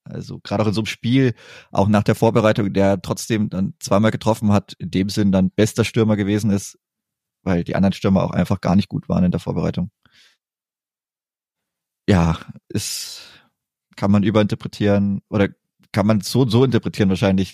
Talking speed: 175 wpm